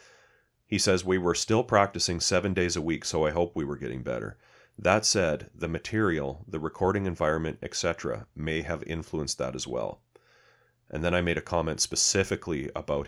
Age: 30-49